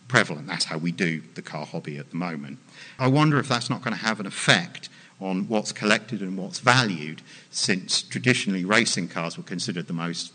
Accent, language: British, English